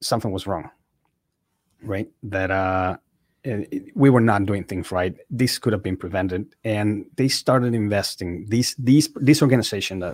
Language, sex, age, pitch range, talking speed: English, male, 30-49, 95-120 Hz, 165 wpm